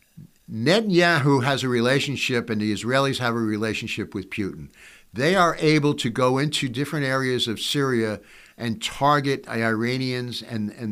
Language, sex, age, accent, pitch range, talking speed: English, male, 60-79, American, 115-145 Hz, 150 wpm